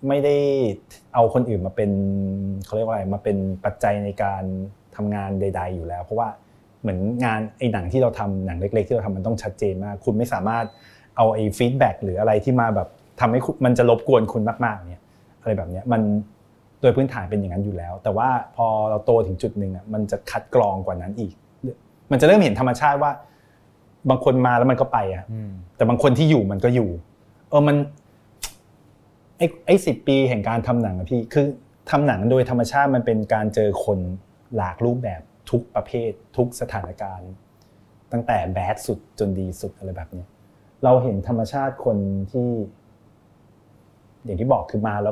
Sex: male